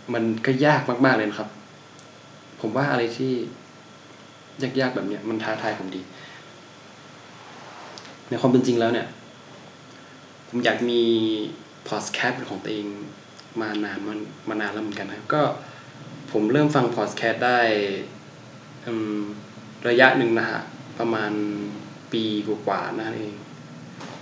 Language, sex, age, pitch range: Thai, male, 20-39, 105-125 Hz